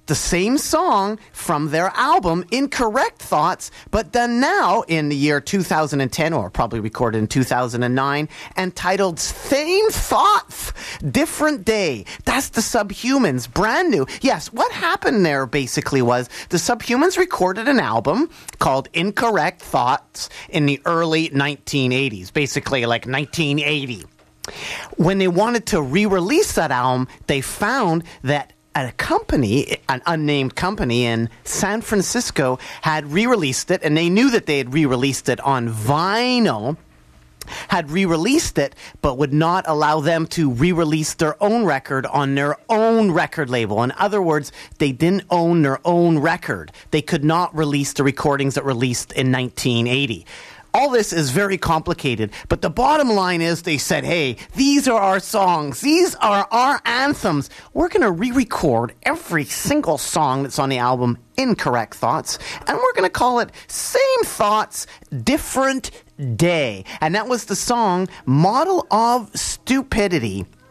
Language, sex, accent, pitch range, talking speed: English, male, American, 140-220 Hz, 150 wpm